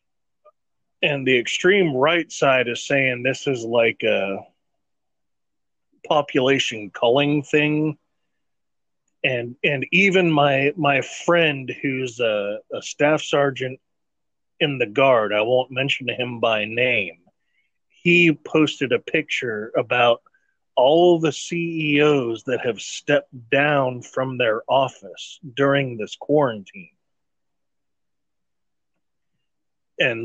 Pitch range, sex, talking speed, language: 125-155 Hz, male, 105 wpm, English